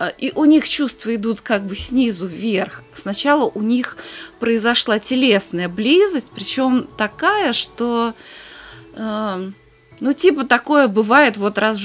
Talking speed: 130 wpm